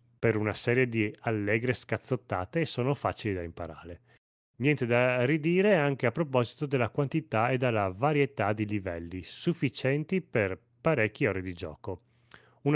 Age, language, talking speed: 30-49, Italian, 145 wpm